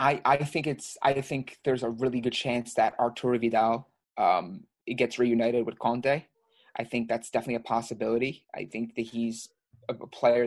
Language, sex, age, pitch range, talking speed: English, male, 20-39, 115-130 Hz, 185 wpm